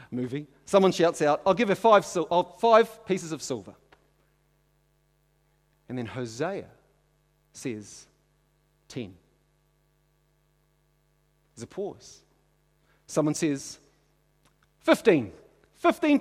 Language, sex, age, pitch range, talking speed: English, male, 40-59, 150-180 Hz, 95 wpm